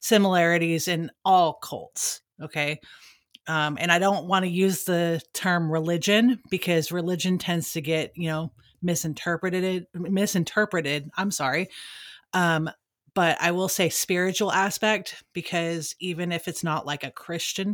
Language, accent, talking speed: English, American, 140 wpm